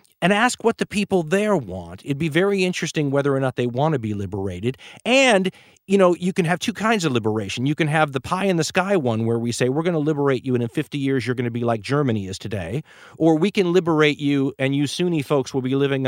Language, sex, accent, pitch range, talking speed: English, male, American, 130-175 Hz, 245 wpm